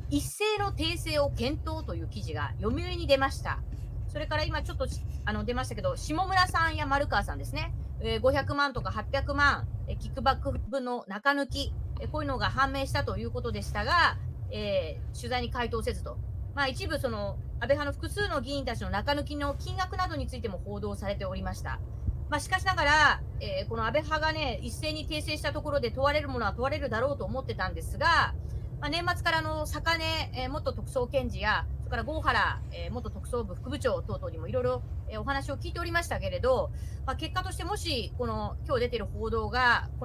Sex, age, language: female, 30-49, Japanese